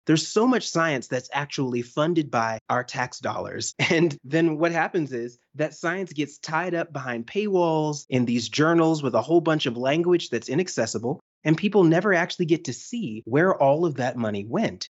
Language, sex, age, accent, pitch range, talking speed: English, male, 30-49, American, 125-175 Hz, 190 wpm